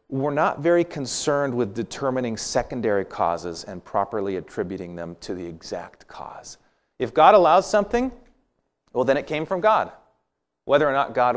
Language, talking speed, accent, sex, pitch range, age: English, 160 wpm, American, male, 110-165 Hz, 40-59